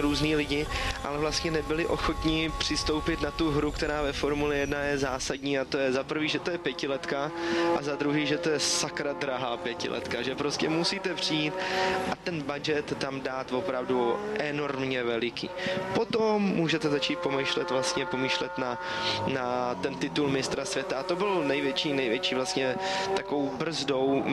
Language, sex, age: Czech, male, 20-39